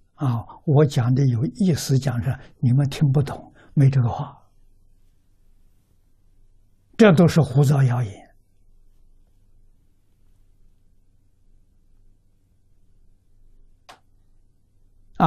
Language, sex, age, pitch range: Chinese, male, 60-79, 100-155 Hz